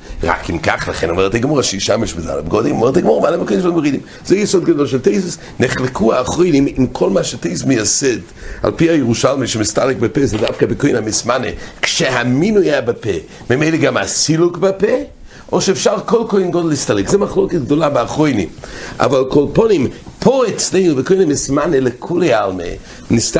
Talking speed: 115 wpm